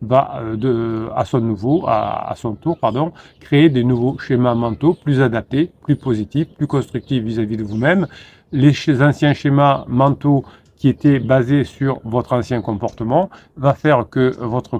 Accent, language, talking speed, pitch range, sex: French, French, 160 wpm, 110-135 Hz, male